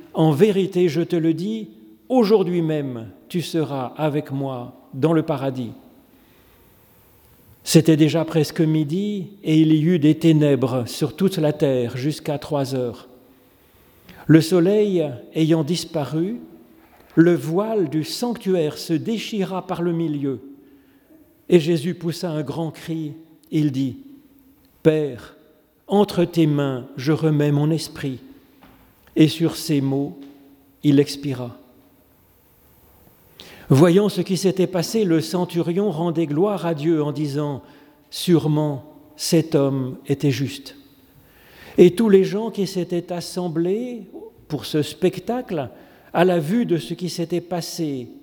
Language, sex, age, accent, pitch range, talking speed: French, male, 40-59, French, 145-175 Hz, 130 wpm